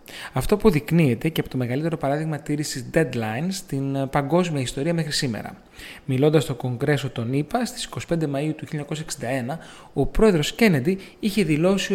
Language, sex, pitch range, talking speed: Greek, male, 135-185 Hz, 150 wpm